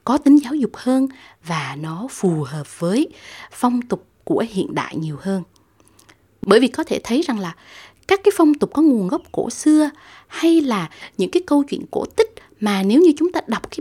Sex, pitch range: female, 195-295 Hz